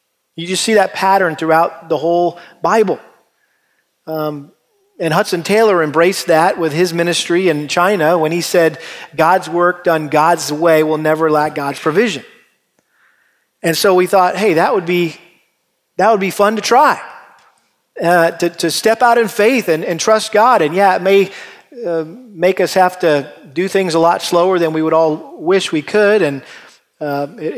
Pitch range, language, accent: 155-180 Hz, English, American